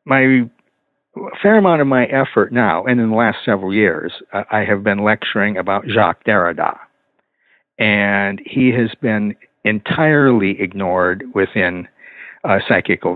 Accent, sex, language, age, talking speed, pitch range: American, male, English, 60-79, 135 wpm, 105-130 Hz